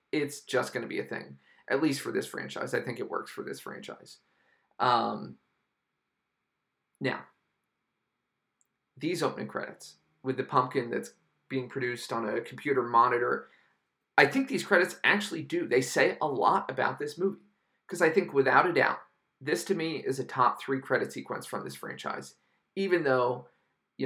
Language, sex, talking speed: English, male, 170 wpm